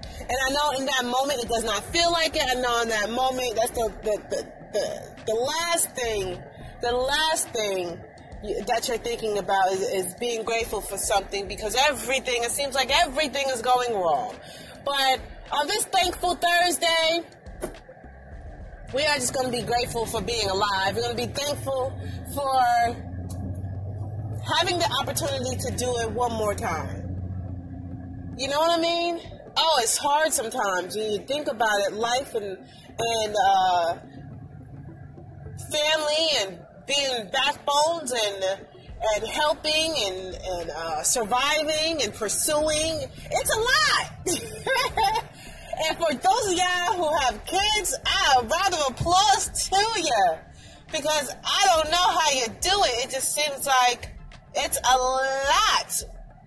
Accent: American